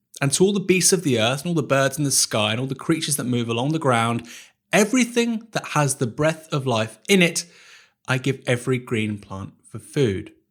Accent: British